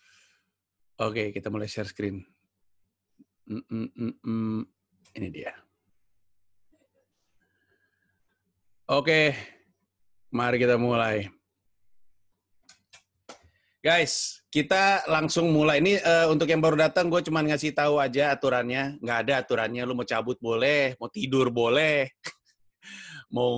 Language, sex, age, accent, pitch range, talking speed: Indonesian, male, 30-49, native, 110-150 Hz, 110 wpm